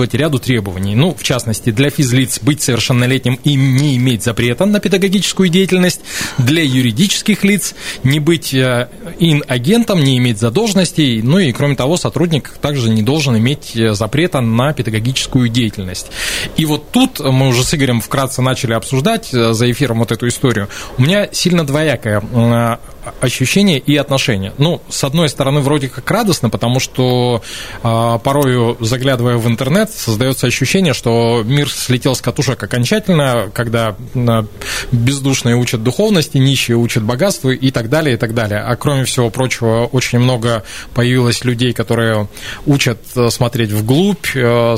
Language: Russian